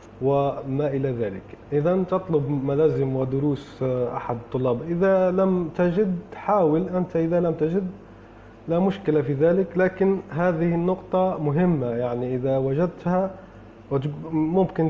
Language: Arabic